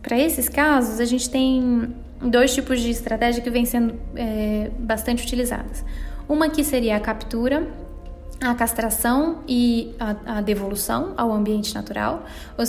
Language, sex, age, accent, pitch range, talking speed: Portuguese, female, 10-29, Brazilian, 215-270 Hz, 145 wpm